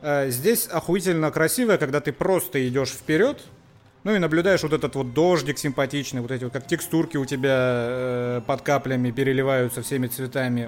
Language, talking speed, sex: Russian, 165 wpm, male